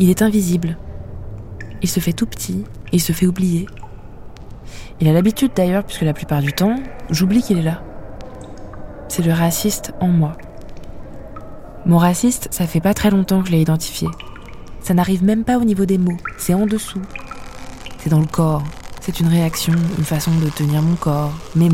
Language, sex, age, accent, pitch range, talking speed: French, female, 20-39, French, 150-180 Hz, 185 wpm